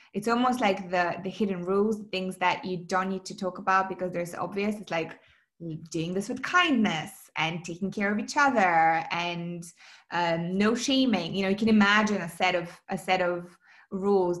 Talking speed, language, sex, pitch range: 190 wpm, English, female, 180-205 Hz